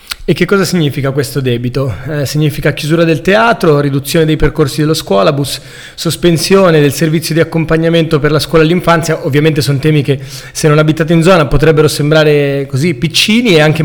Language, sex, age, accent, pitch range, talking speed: Italian, male, 20-39, native, 145-165 Hz, 175 wpm